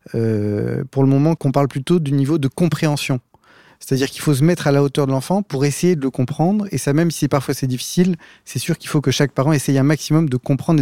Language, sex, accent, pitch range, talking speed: French, male, French, 135-165 Hz, 250 wpm